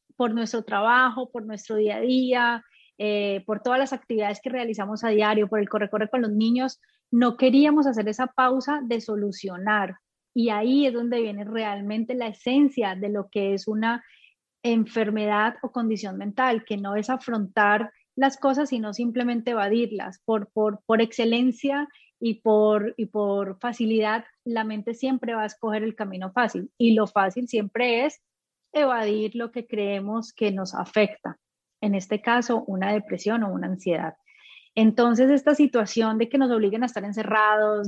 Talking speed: 165 wpm